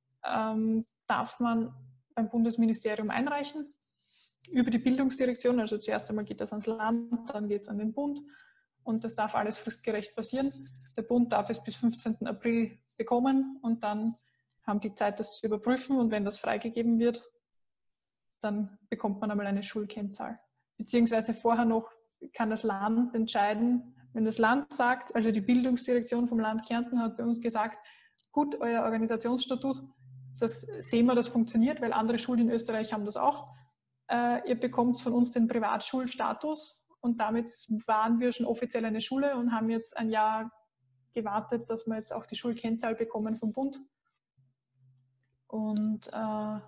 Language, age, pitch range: German, 20-39, 215-240 Hz